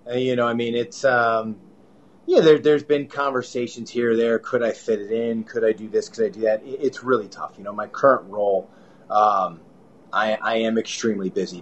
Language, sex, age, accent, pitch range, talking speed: English, male, 30-49, American, 110-135 Hz, 210 wpm